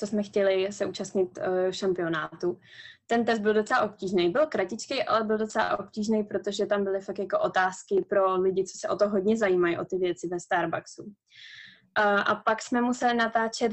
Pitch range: 200-220 Hz